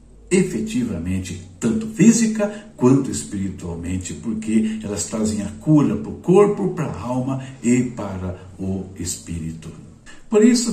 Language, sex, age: Portuguese, male, 60-79